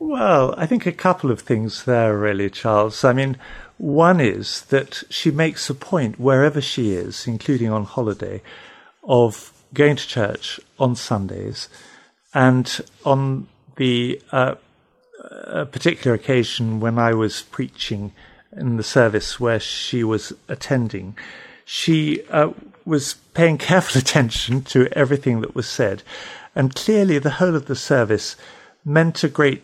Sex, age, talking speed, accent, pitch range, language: male, 50-69, 140 wpm, British, 115-150 Hz, English